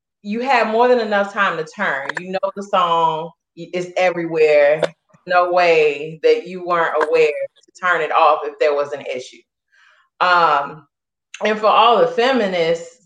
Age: 30-49